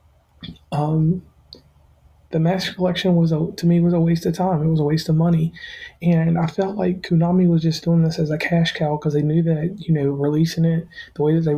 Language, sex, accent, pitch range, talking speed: English, male, American, 150-175 Hz, 230 wpm